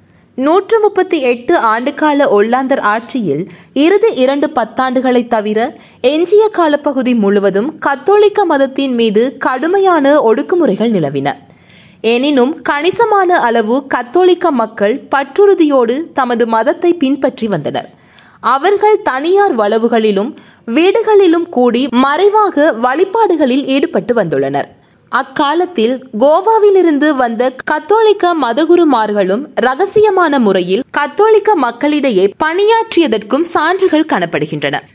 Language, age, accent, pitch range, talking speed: Tamil, 20-39, native, 235-345 Hz, 85 wpm